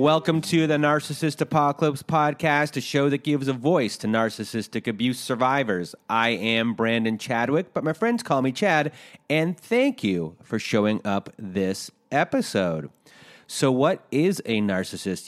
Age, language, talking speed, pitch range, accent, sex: 30-49, English, 155 wpm, 100-145 Hz, American, male